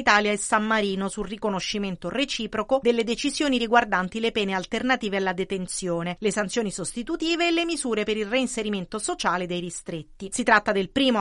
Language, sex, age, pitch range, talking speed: Italian, female, 40-59, 195-250 Hz, 165 wpm